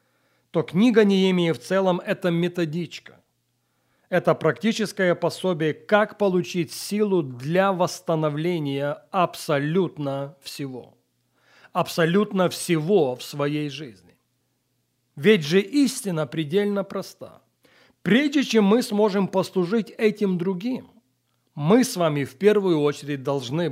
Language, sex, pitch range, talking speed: Russian, male, 145-200 Hz, 105 wpm